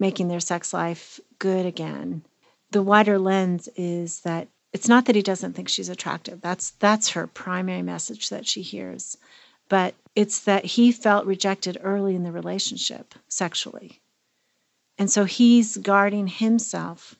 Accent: American